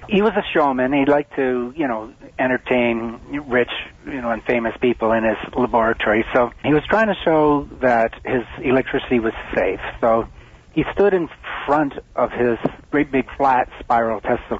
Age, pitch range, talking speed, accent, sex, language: 60-79, 115-140 Hz, 175 wpm, American, male, English